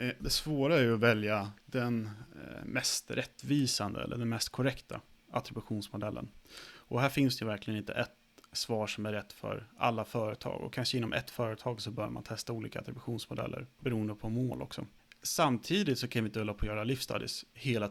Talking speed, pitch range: 180 wpm, 105-125 Hz